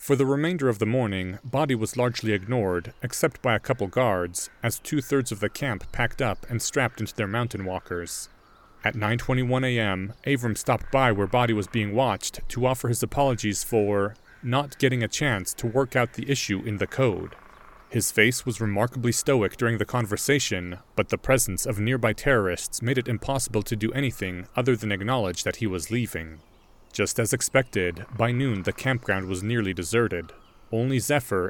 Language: English